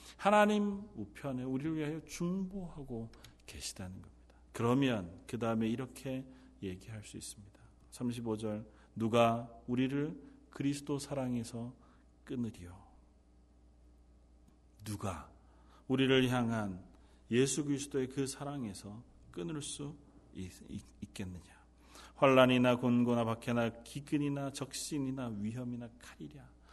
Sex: male